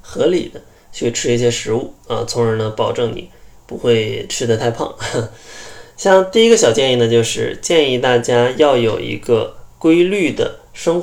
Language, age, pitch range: Chinese, 20-39, 115-165 Hz